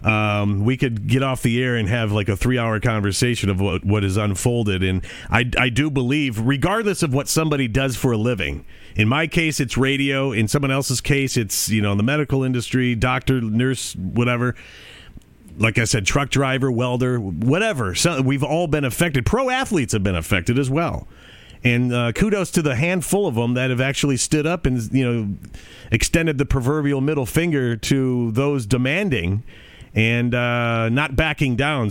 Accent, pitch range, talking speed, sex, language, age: American, 110-145 Hz, 180 wpm, male, English, 40-59